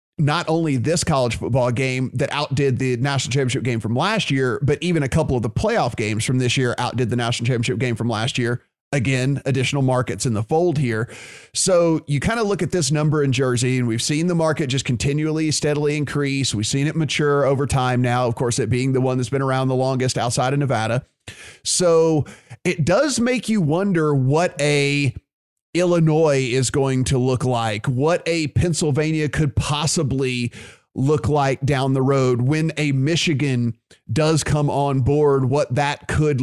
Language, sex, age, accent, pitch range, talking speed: English, male, 30-49, American, 125-155 Hz, 190 wpm